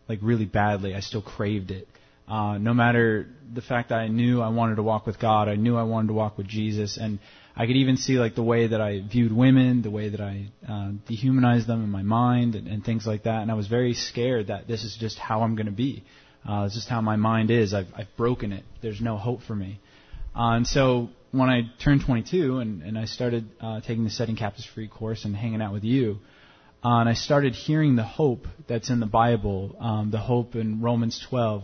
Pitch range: 105-120 Hz